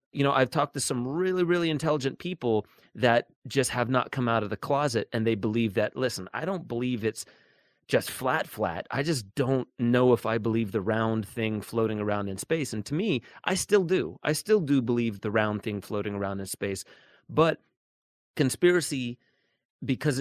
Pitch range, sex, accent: 110-140 Hz, male, American